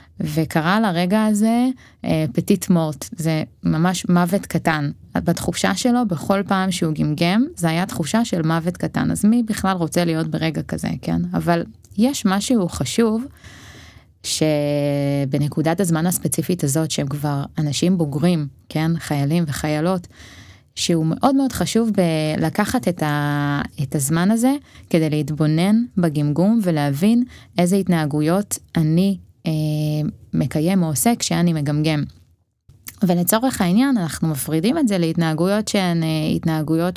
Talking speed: 120 wpm